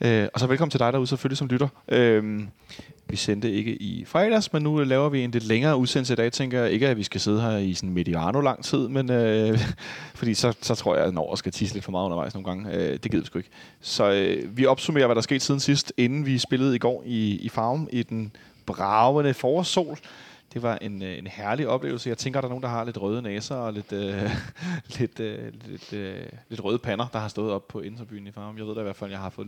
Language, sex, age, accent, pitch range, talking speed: Danish, male, 30-49, native, 105-130 Hz, 260 wpm